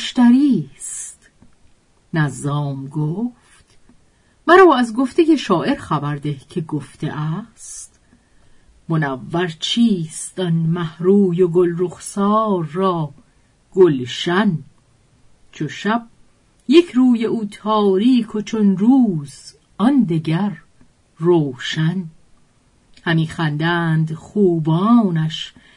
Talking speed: 85 wpm